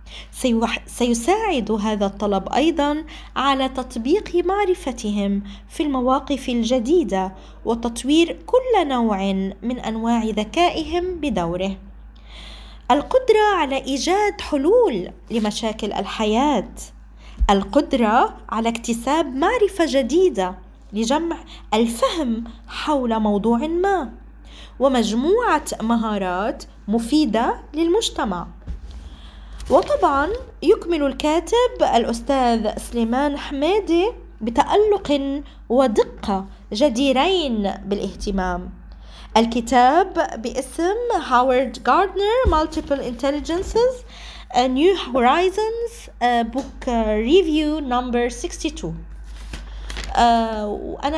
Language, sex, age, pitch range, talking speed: Arabic, female, 20-39, 220-325 Hz, 75 wpm